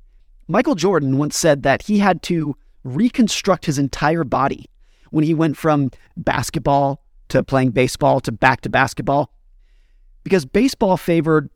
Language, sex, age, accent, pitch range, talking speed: English, male, 30-49, American, 135-170 Hz, 140 wpm